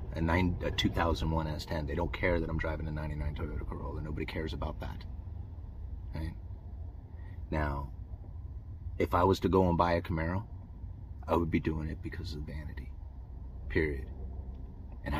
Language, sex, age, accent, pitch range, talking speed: English, male, 30-49, American, 80-95 Hz, 160 wpm